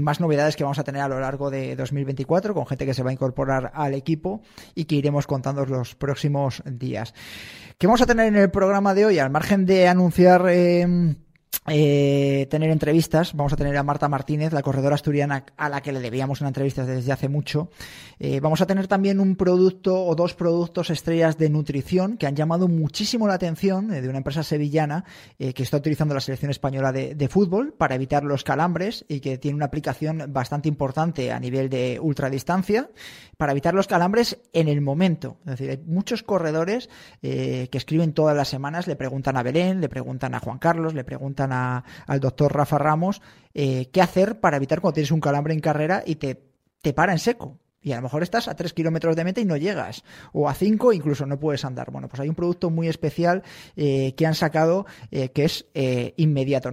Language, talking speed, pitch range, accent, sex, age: Spanish, 210 wpm, 135-170 Hz, Spanish, male, 20-39